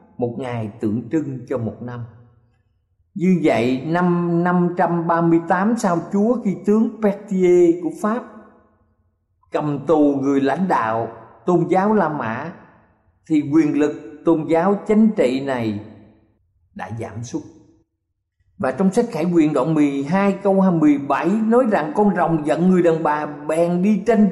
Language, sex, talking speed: Vietnamese, male, 145 wpm